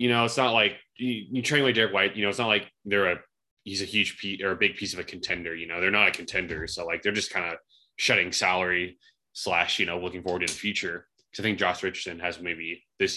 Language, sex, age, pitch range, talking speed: English, male, 20-39, 90-120 Hz, 280 wpm